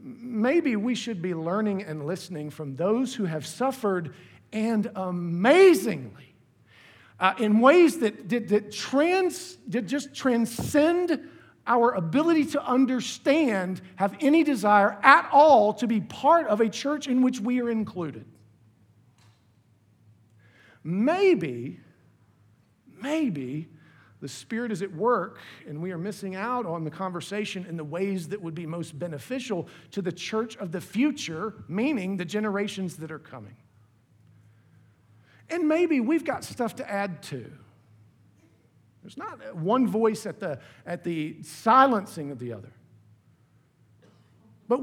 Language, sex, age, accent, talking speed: English, male, 50-69, American, 135 wpm